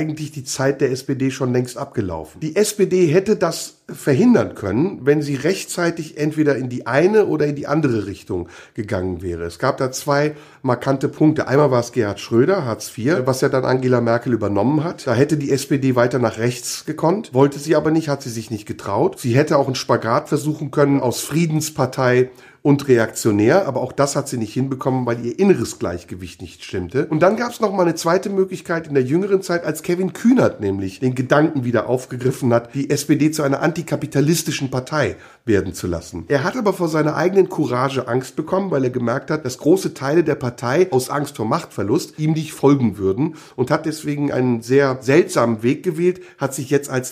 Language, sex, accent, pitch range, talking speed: German, male, German, 125-160 Hz, 205 wpm